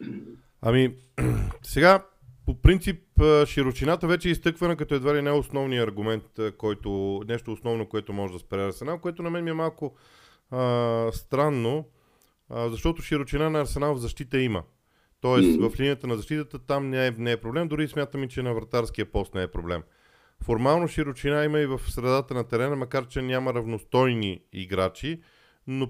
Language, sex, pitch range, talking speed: Bulgarian, male, 115-150 Hz, 165 wpm